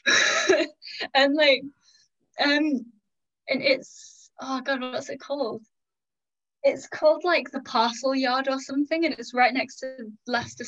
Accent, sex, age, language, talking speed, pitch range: British, female, 10-29, English, 135 wpm, 235-280 Hz